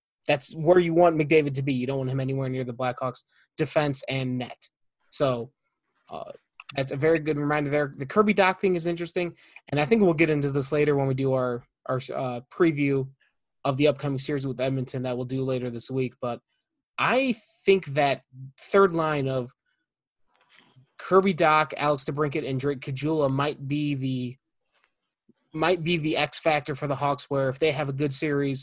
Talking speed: 190 wpm